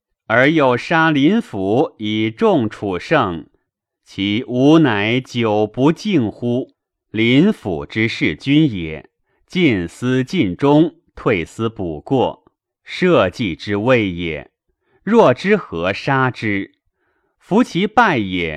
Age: 30-49